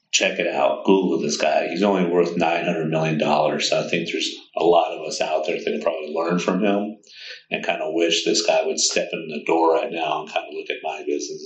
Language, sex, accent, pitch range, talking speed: English, male, American, 80-110 Hz, 240 wpm